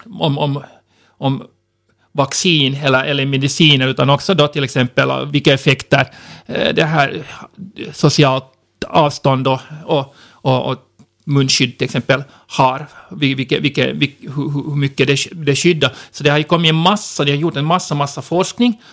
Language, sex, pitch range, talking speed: Swedish, male, 140-165 Hz, 155 wpm